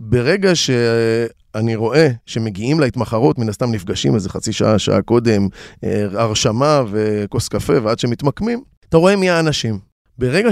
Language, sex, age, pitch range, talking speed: Hebrew, male, 20-39, 120-170 Hz, 130 wpm